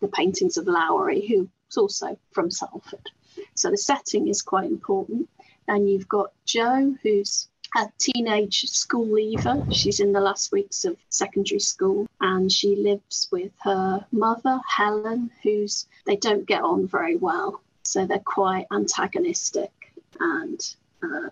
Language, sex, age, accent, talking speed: English, female, 30-49, British, 145 wpm